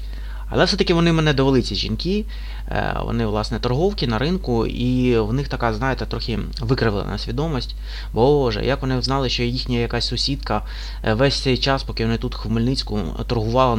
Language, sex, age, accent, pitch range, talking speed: Russian, male, 20-39, native, 110-140 Hz, 160 wpm